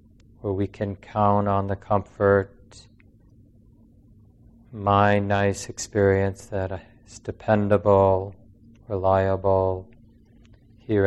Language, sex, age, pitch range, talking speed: English, male, 40-59, 100-115 Hz, 80 wpm